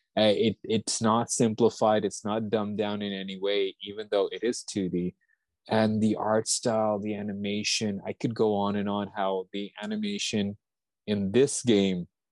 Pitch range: 100-115 Hz